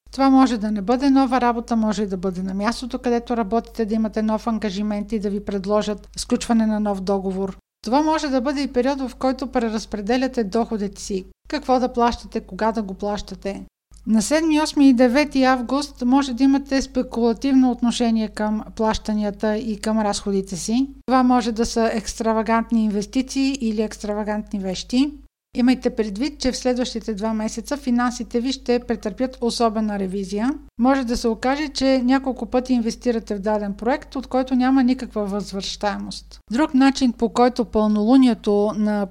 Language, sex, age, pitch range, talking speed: Bulgarian, female, 50-69, 215-260 Hz, 165 wpm